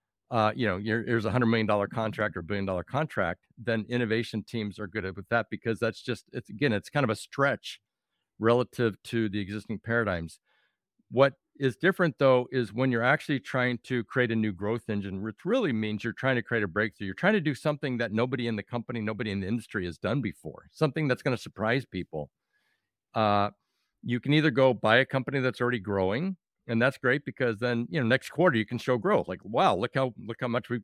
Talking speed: 230 wpm